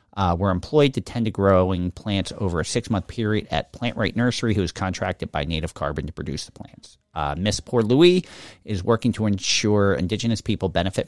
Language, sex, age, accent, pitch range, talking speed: English, male, 40-59, American, 85-110 Hz, 200 wpm